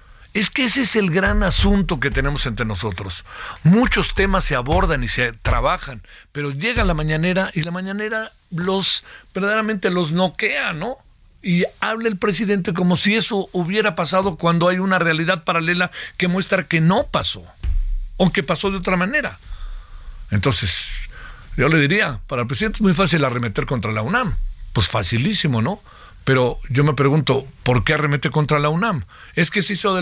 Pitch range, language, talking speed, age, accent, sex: 135-195 Hz, Spanish, 175 wpm, 50-69, Mexican, male